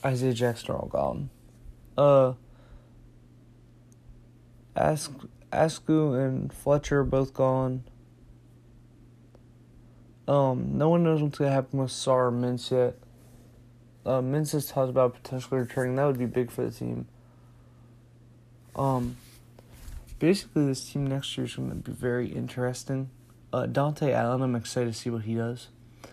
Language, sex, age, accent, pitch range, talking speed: English, male, 20-39, American, 120-135 Hz, 140 wpm